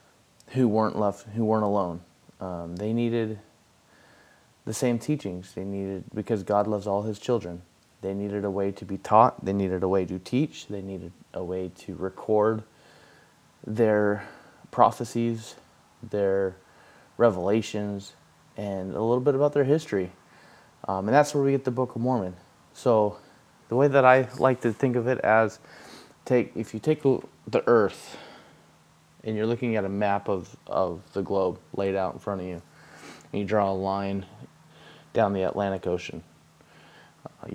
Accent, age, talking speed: American, 20-39, 165 wpm